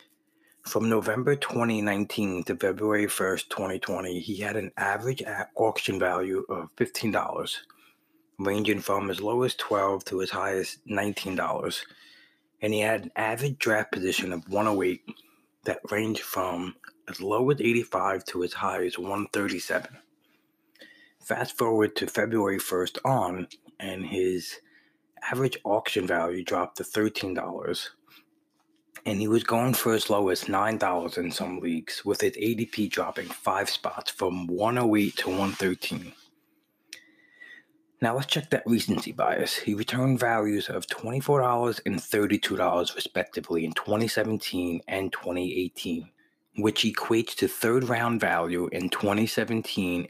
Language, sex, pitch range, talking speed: English, male, 100-130 Hz, 130 wpm